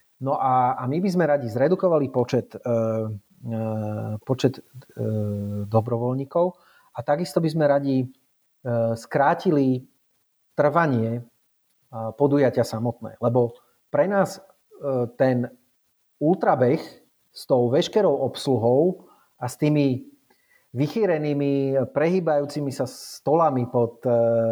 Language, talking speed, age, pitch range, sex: Slovak, 105 wpm, 40-59, 120-150 Hz, male